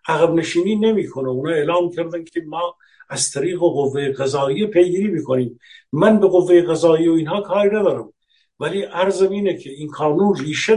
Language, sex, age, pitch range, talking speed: Persian, male, 60-79, 140-185 Hz, 175 wpm